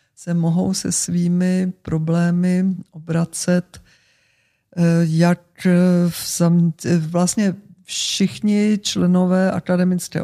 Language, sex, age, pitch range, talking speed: Czech, female, 50-69, 160-180 Hz, 65 wpm